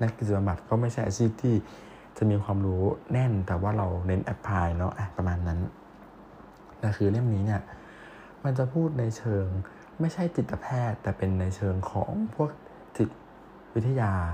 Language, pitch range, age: Thai, 95-125 Hz, 20-39